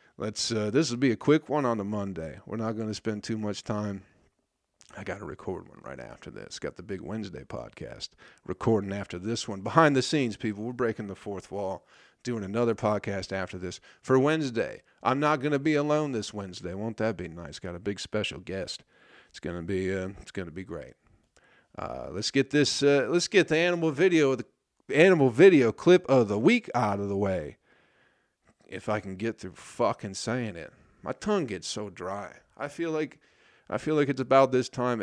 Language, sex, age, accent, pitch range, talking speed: English, male, 50-69, American, 95-130 Hz, 210 wpm